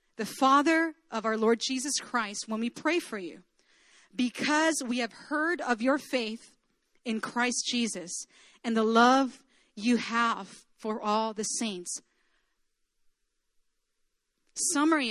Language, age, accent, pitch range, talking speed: English, 40-59, American, 215-285 Hz, 125 wpm